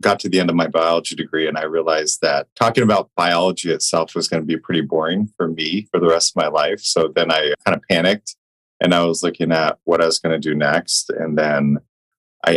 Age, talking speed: 30-49, 245 wpm